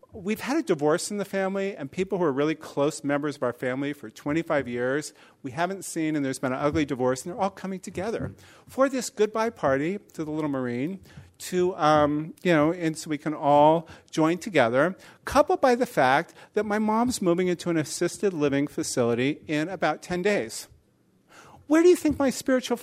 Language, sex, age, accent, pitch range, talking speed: English, male, 40-59, American, 150-210 Hz, 200 wpm